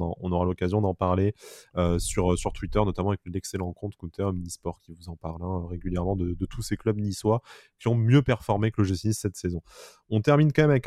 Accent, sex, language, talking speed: French, male, French, 230 wpm